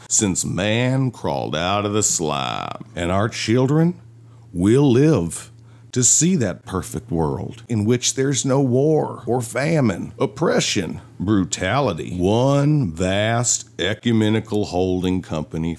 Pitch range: 90-125 Hz